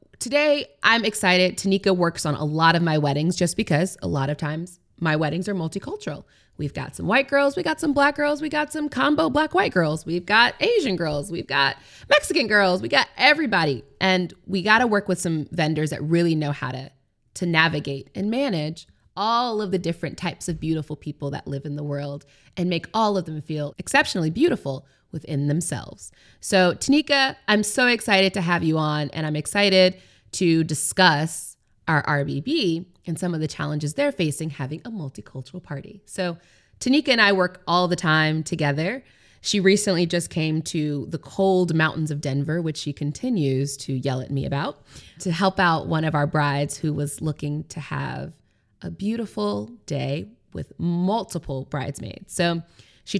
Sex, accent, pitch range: female, American, 145-200 Hz